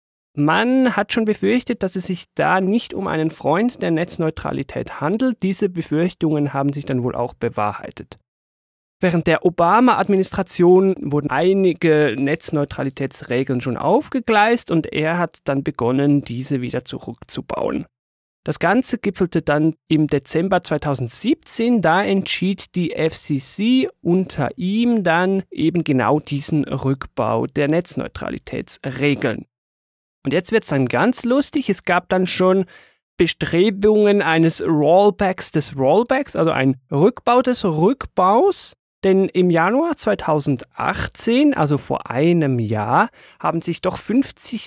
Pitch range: 145-195 Hz